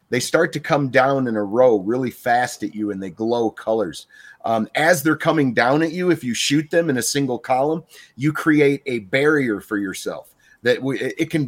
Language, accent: English, American